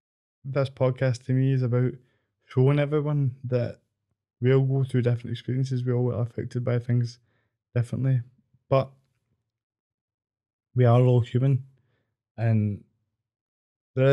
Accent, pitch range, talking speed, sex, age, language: British, 115-130 Hz, 125 wpm, male, 10-29, English